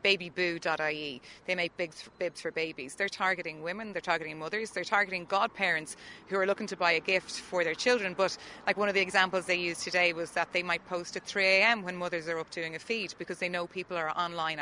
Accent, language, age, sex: Irish, English, 30-49, female